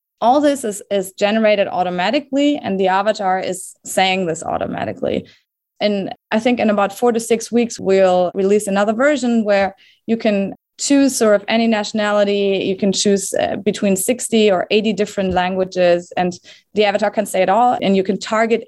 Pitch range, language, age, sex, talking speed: 185-220 Hz, English, 20-39, female, 175 wpm